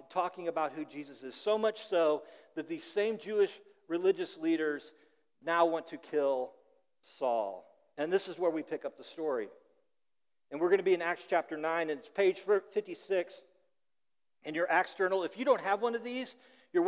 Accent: American